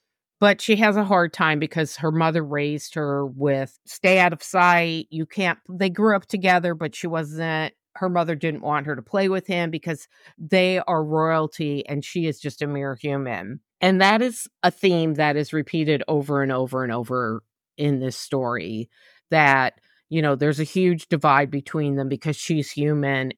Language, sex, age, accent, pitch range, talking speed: English, female, 50-69, American, 145-185 Hz, 185 wpm